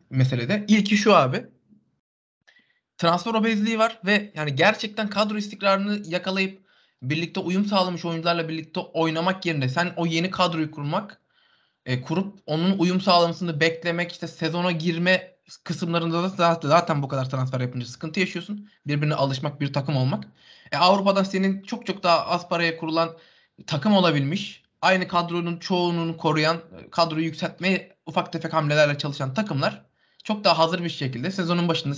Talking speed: 145 wpm